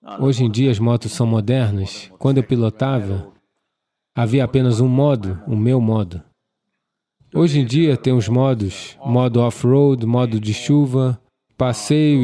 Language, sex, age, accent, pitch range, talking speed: English, male, 20-39, Brazilian, 110-135 Hz, 145 wpm